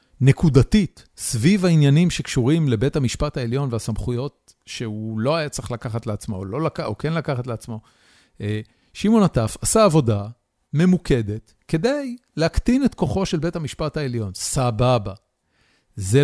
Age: 40-59